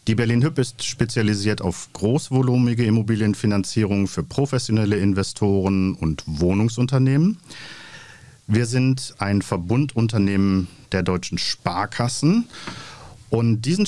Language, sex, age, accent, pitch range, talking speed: German, male, 50-69, German, 90-120 Hz, 90 wpm